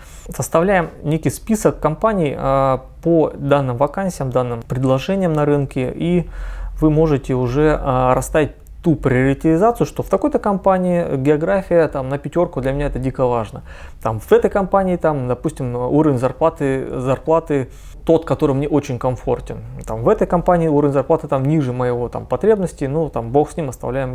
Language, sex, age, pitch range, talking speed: Russian, male, 20-39, 125-160 Hz, 160 wpm